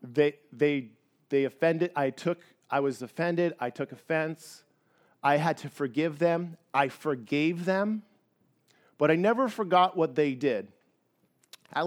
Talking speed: 140 wpm